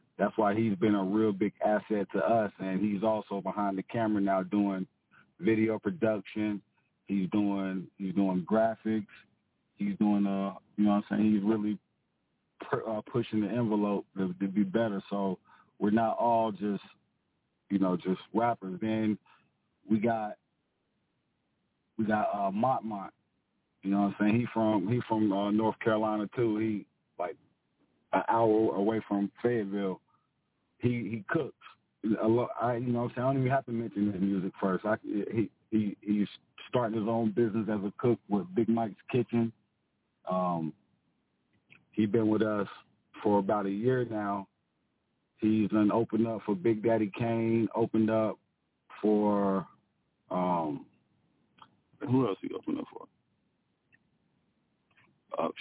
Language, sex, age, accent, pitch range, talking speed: English, male, 40-59, American, 100-115 Hz, 150 wpm